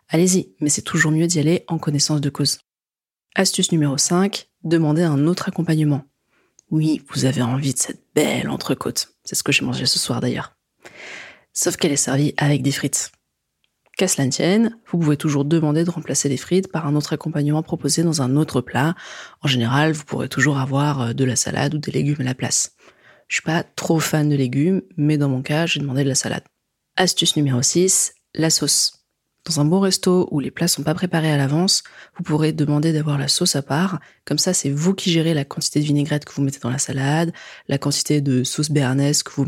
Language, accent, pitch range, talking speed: French, French, 140-170 Hz, 215 wpm